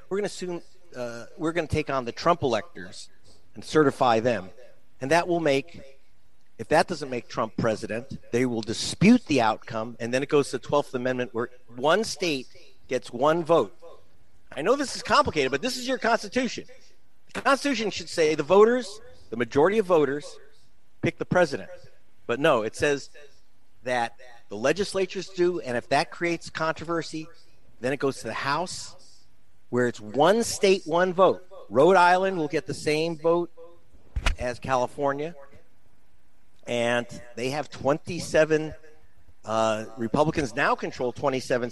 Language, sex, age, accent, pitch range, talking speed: English, male, 50-69, American, 115-165 Hz, 165 wpm